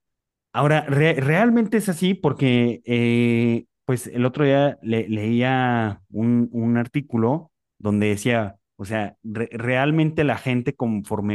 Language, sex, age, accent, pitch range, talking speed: Spanish, male, 30-49, Mexican, 105-125 Hz, 130 wpm